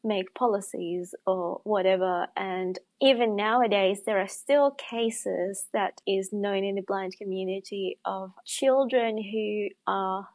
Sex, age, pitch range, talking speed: female, 20-39, 190-230 Hz, 130 wpm